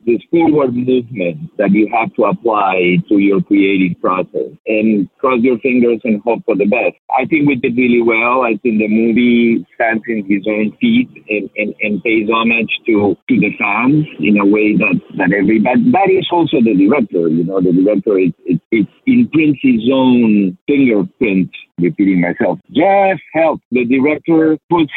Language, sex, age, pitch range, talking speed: English, male, 50-69, 100-140 Hz, 180 wpm